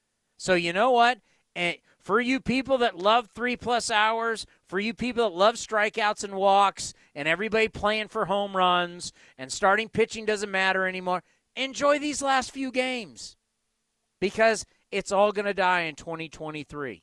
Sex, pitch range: male, 175-225 Hz